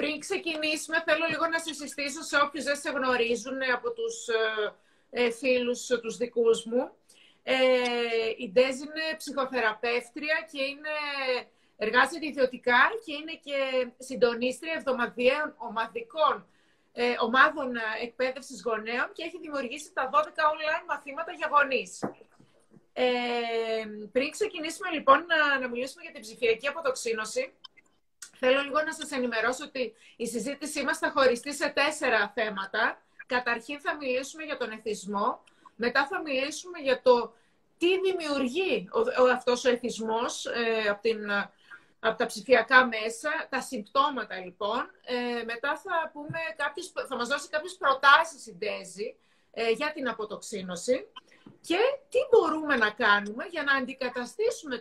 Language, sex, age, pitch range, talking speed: Greek, female, 30-49, 235-305 Hz, 130 wpm